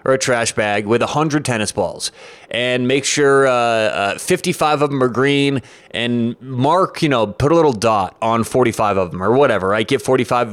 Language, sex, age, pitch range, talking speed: English, male, 30-49, 115-150 Hz, 200 wpm